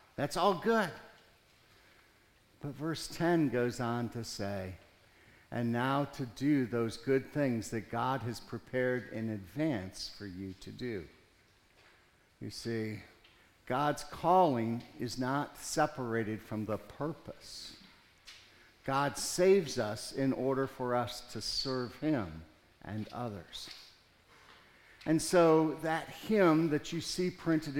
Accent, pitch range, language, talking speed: American, 110-150 Hz, English, 125 wpm